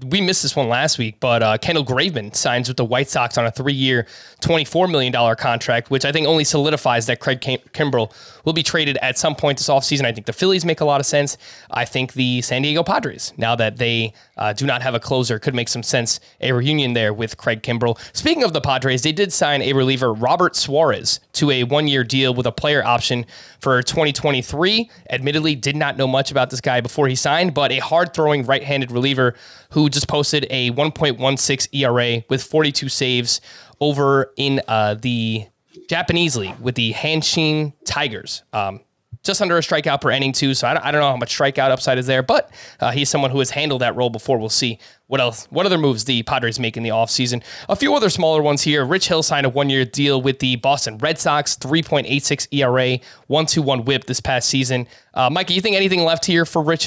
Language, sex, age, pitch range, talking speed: English, male, 20-39, 125-150 Hz, 220 wpm